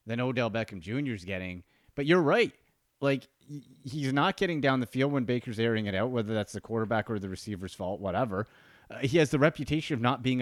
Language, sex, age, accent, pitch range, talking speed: English, male, 30-49, American, 125-205 Hz, 215 wpm